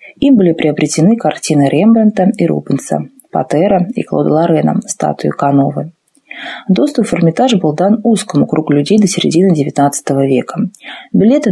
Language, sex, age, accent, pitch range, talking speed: Russian, female, 20-39, native, 150-210 Hz, 135 wpm